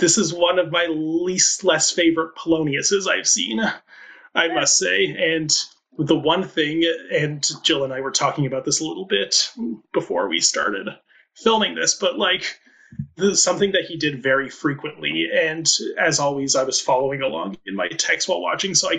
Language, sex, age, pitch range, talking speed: English, male, 30-49, 140-170 Hz, 180 wpm